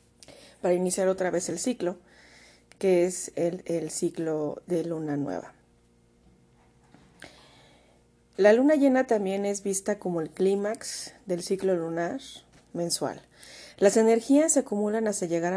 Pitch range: 175-205 Hz